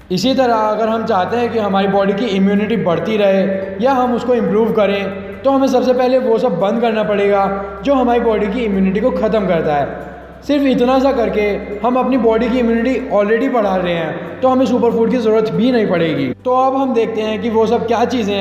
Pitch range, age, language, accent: 200-245 Hz, 20-39, Hindi, native